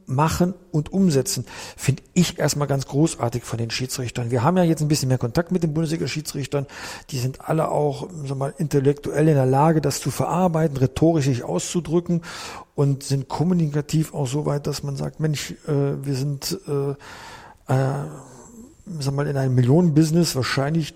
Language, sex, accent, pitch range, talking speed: German, male, German, 130-155 Hz, 150 wpm